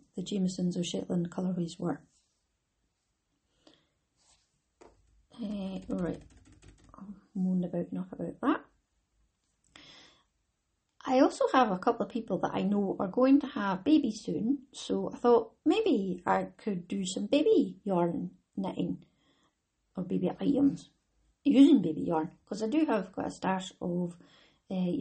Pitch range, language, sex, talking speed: 175-230 Hz, English, female, 135 wpm